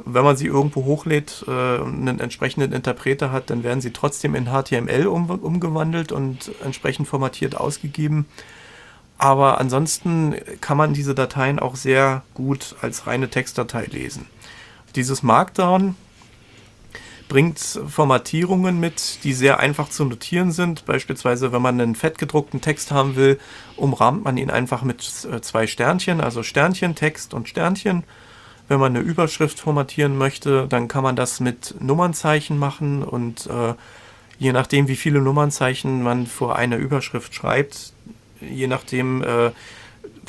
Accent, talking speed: German, 140 wpm